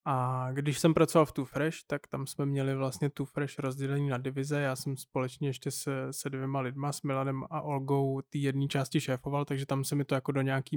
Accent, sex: native, male